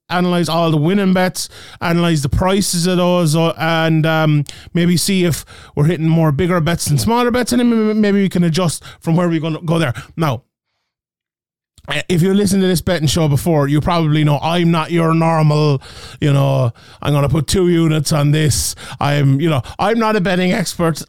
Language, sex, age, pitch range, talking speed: English, male, 20-39, 150-175 Hz, 195 wpm